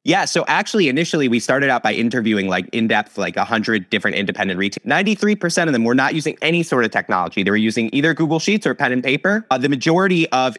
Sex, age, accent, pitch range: male, 30-49, American, 110-160 Hz